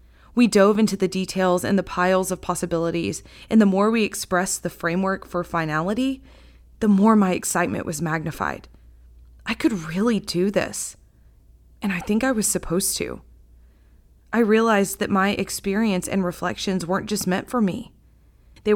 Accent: American